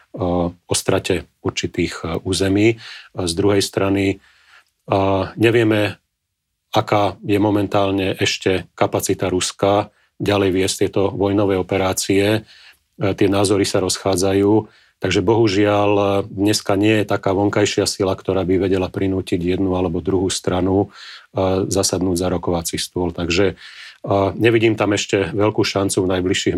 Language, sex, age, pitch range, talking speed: Slovak, male, 40-59, 90-100 Hz, 115 wpm